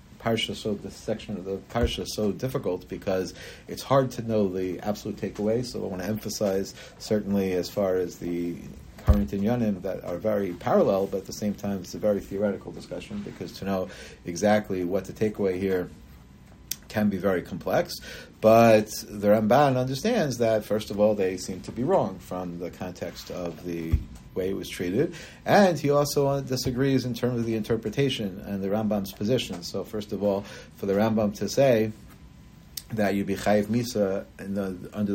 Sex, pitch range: male, 95-110 Hz